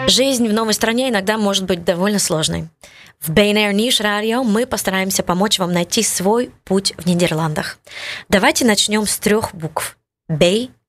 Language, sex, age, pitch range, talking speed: Ukrainian, female, 20-39, 175-215 Hz, 155 wpm